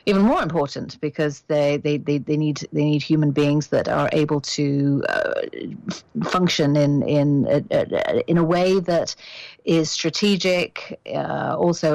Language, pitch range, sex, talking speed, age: English, 150-175 Hz, female, 160 wpm, 40-59